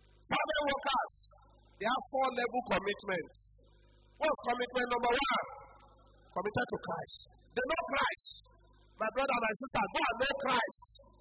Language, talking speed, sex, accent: English, 140 wpm, male, Nigerian